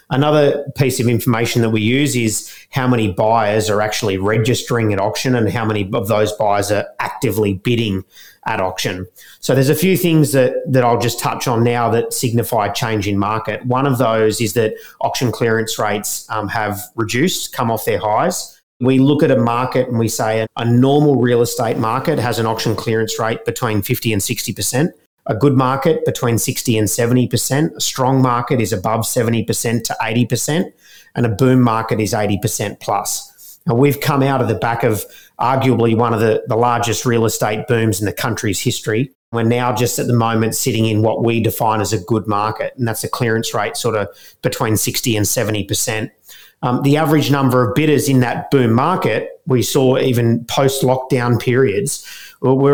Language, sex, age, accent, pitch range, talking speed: English, male, 30-49, Australian, 110-130 Hz, 190 wpm